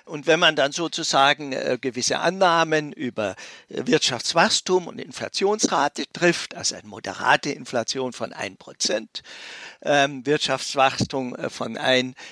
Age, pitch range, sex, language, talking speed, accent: 50-69, 145-235 Hz, male, German, 120 wpm, German